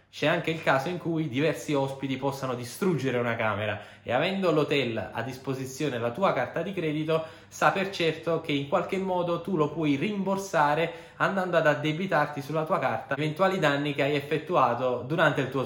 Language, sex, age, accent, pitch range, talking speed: Italian, male, 10-29, native, 140-185 Hz, 180 wpm